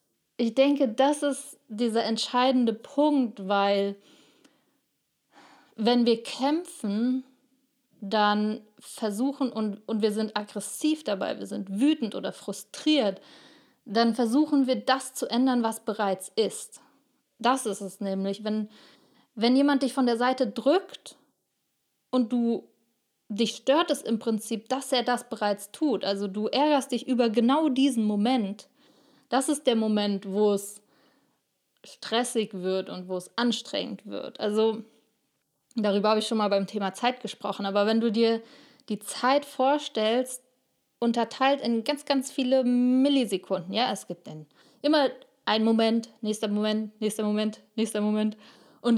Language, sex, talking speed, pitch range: German, female, 140 wpm, 215-265 Hz